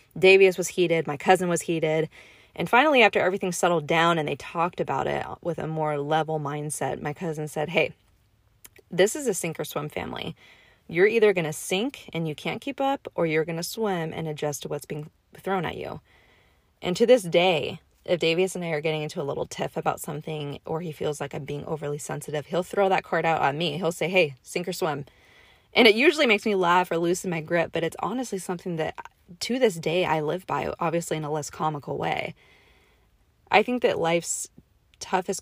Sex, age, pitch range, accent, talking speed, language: female, 20-39, 155-185 Hz, American, 215 wpm, English